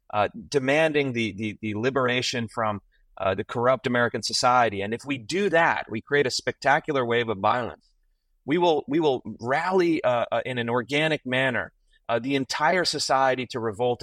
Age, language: 30-49, English